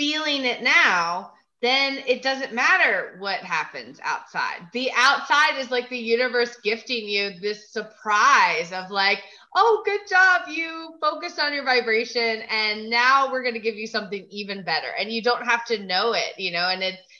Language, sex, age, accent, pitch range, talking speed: English, female, 20-39, American, 185-235 Hz, 180 wpm